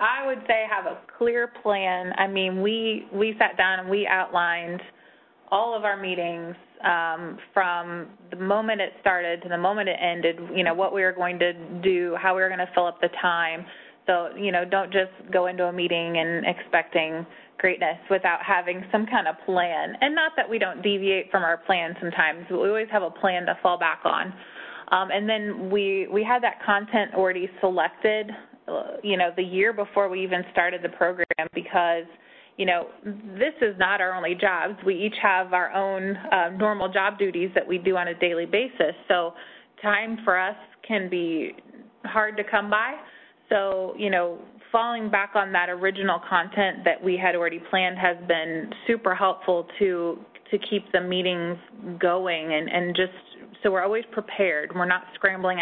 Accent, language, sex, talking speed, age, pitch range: American, English, female, 190 wpm, 20-39, 175-205 Hz